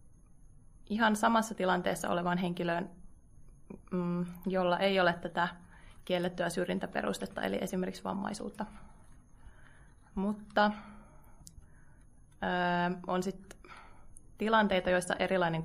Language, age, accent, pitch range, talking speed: Finnish, 20-39, native, 175-205 Hz, 75 wpm